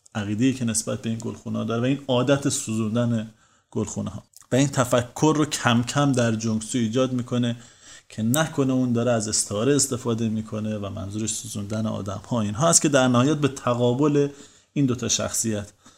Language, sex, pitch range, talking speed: Persian, male, 120-160 Hz, 175 wpm